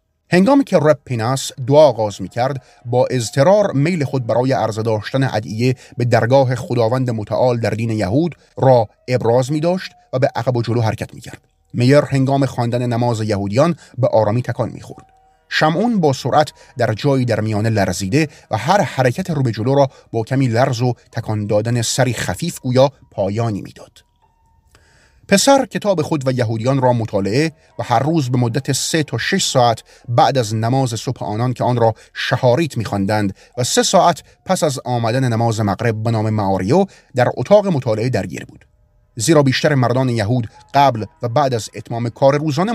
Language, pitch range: Persian, 115-145 Hz